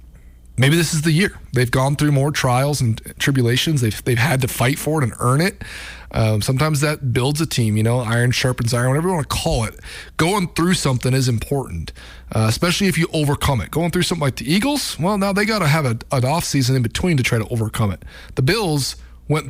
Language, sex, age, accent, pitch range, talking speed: English, male, 30-49, American, 115-150 Hz, 230 wpm